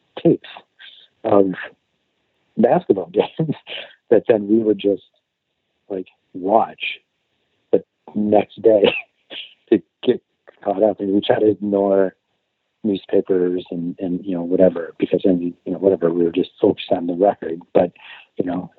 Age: 50-69